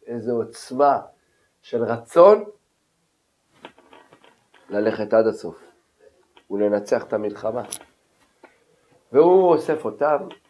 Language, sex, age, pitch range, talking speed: Hebrew, male, 50-69, 115-145 Hz, 75 wpm